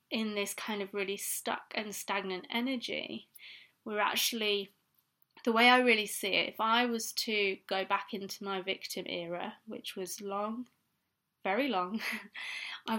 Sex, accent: female, British